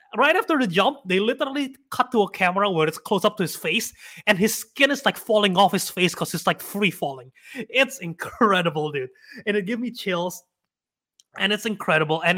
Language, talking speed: English, 210 wpm